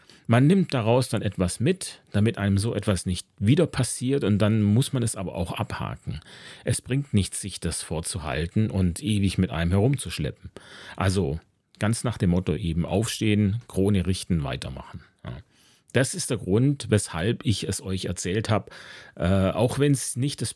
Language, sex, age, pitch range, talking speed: German, male, 40-59, 95-120 Hz, 165 wpm